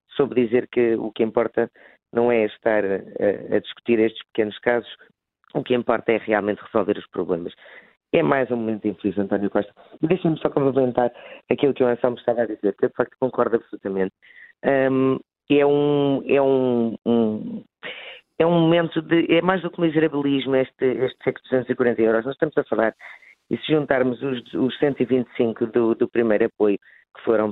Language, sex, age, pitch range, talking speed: Portuguese, female, 20-39, 110-135 Hz, 175 wpm